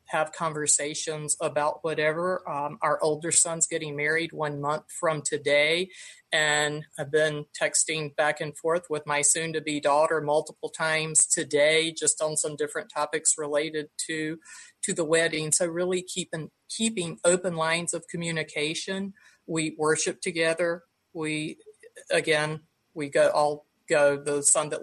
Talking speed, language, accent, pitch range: 140 wpm, English, American, 150-170 Hz